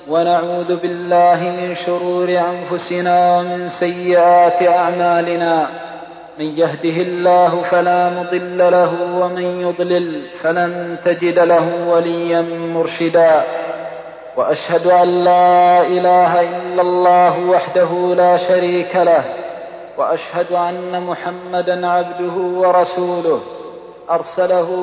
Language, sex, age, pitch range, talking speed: Arabic, male, 40-59, 175-180 Hz, 90 wpm